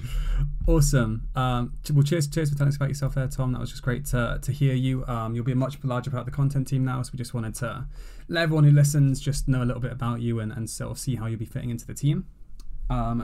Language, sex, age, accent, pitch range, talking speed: English, male, 20-39, British, 120-140 Hz, 275 wpm